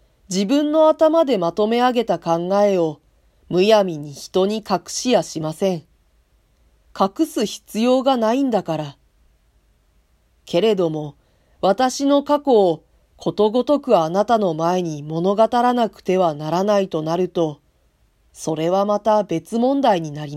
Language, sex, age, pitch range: Japanese, female, 40-59, 155-230 Hz